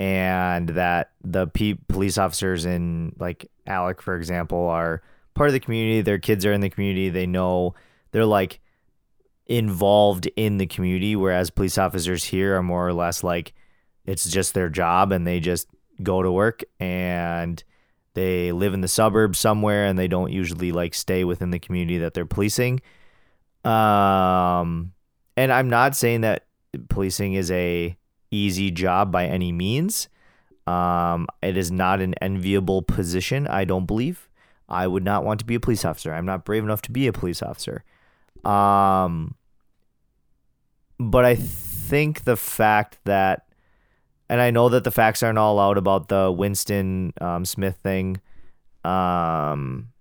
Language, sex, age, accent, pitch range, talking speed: English, male, 30-49, American, 90-105 Hz, 160 wpm